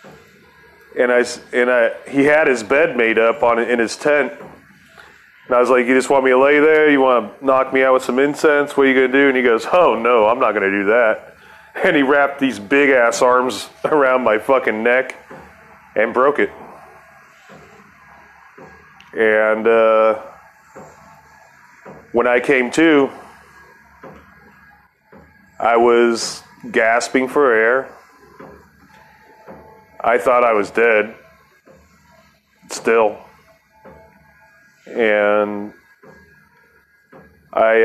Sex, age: male, 30-49